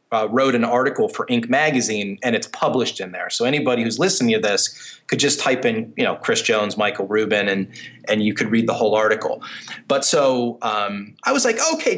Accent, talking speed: American, 215 wpm